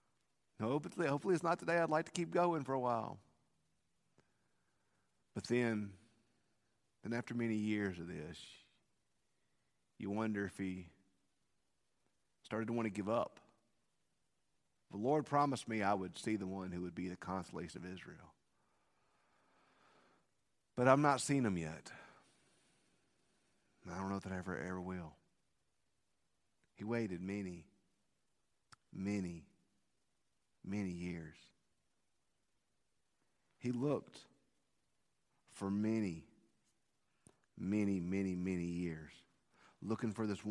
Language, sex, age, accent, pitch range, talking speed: English, male, 50-69, American, 95-160 Hz, 115 wpm